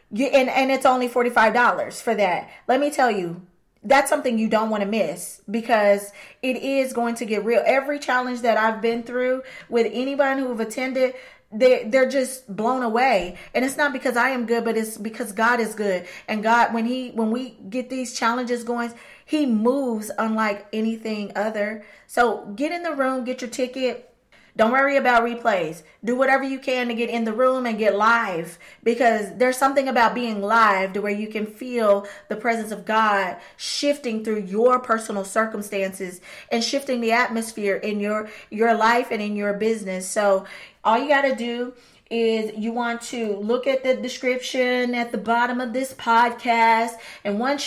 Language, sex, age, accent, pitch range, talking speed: English, female, 20-39, American, 215-250 Hz, 190 wpm